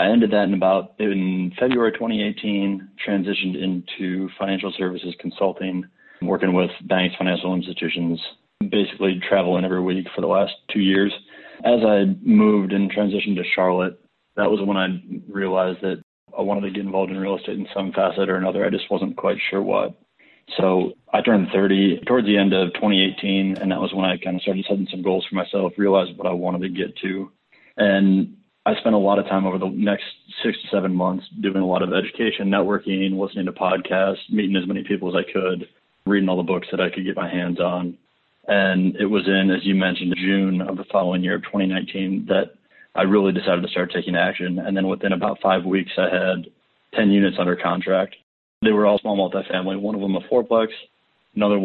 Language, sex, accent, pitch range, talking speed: English, male, American, 95-100 Hz, 200 wpm